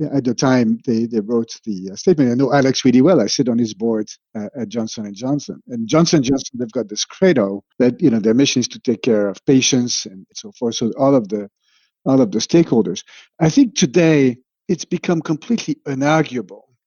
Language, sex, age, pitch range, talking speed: English, male, 50-69, 125-155 Hz, 215 wpm